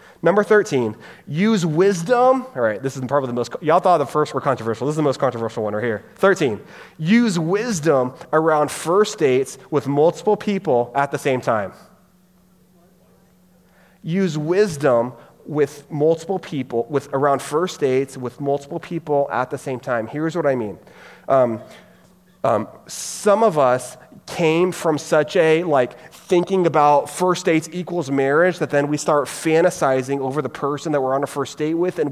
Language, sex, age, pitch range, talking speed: English, male, 30-49, 135-170 Hz, 170 wpm